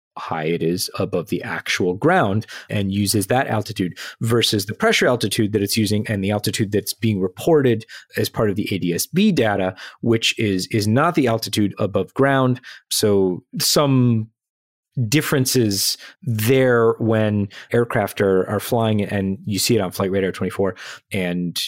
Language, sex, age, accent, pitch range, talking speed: English, male, 30-49, American, 95-115 Hz, 155 wpm